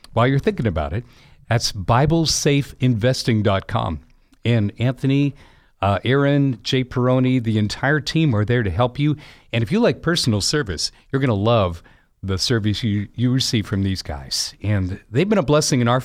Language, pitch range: English, 105-140 Hz